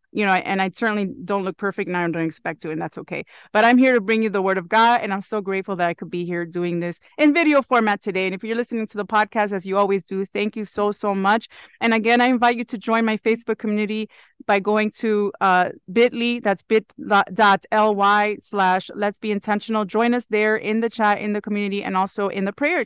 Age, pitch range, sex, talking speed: 30-49, 200-245 Hz, female, 240 wpm